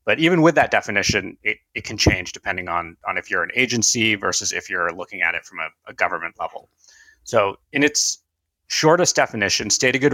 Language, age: English, 30-49